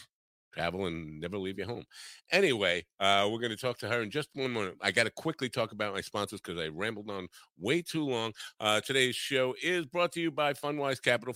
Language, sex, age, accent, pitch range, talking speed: English, male, 50-69, American, 100-140 Hz, 225 wpm